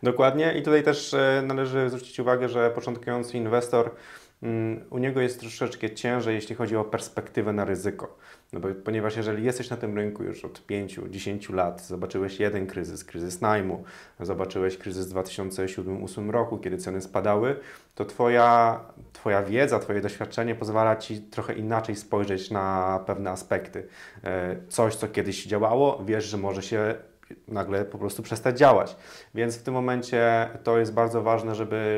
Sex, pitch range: male, 105-120 Hz